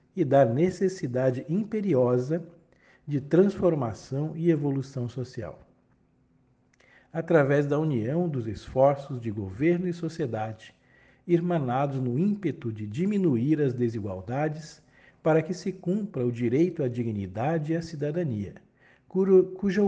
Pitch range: 125-170 Hz